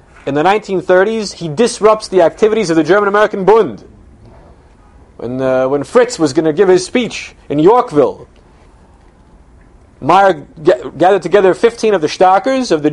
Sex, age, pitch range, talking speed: male, 30-49, 135-195 Hz, 160 wpm